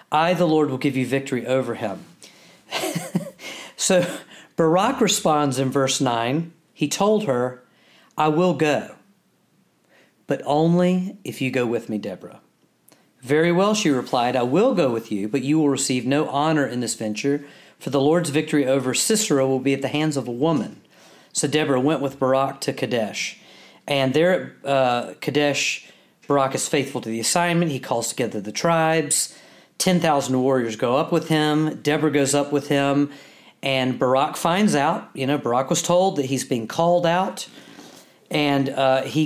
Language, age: English, 40-59